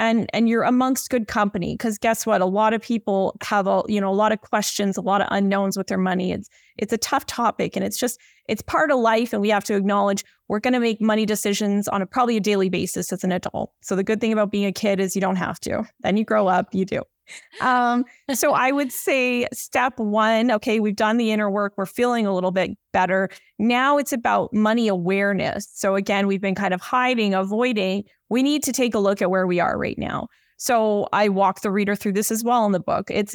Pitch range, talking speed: 195-230 Hz, 245 wpm